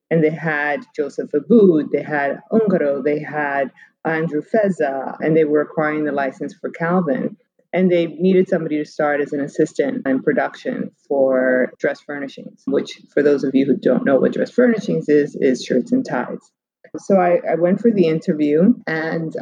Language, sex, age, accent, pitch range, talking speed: English, female, 20-39, American, 150-190 Hz, 180 wpm